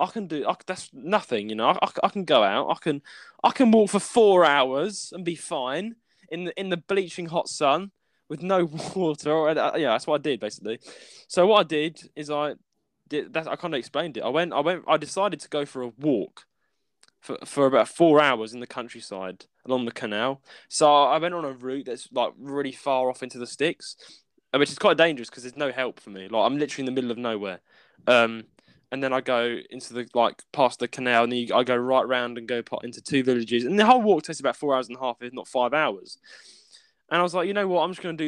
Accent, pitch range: British, 125-175 Hz